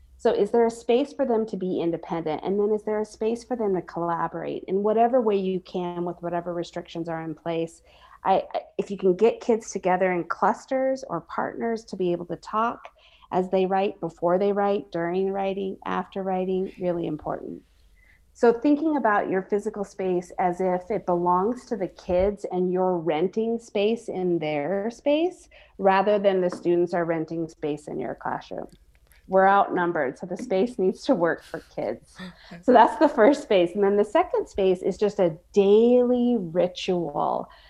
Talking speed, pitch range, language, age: 180 wpm, 175-225 Hz, English, 30-49